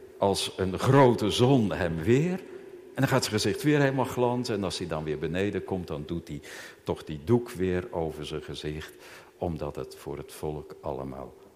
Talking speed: 190 wpm